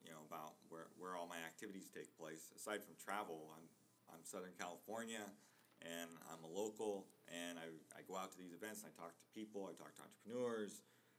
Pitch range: 85-100 Hz